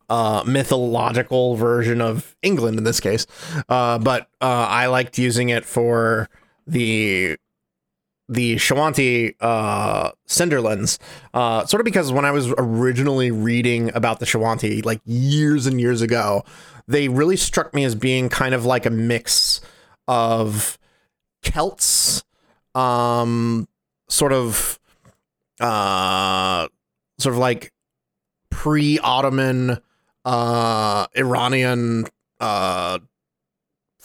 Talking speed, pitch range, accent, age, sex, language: 110 wpm, 115-130 Hz, American, 30-49, male, English